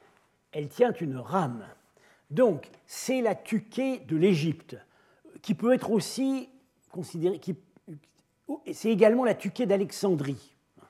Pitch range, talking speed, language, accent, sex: 150-200 Hz, 110 wpm, French, French, male